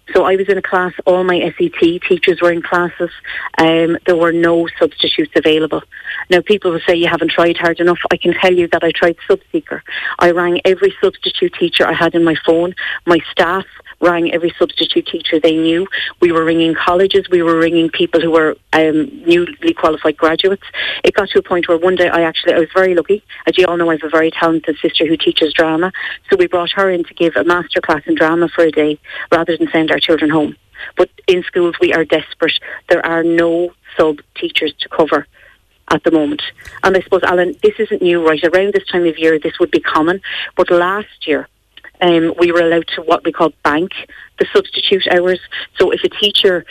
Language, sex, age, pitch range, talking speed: English, female, 40-59, 165-190 Hz, 215 wpm